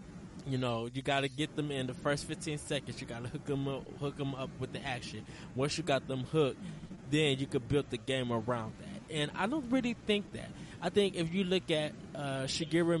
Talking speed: 225 wpm